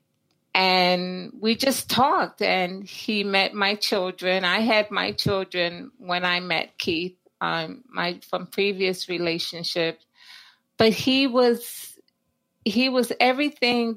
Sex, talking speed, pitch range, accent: female, 125 wpm, 180-225 Hz, American